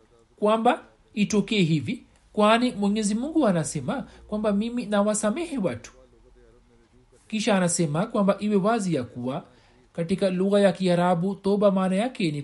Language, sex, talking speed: Swahili, male, 125 wpm